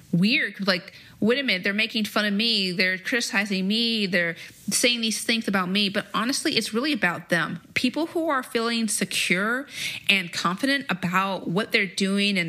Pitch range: 190-235 Hz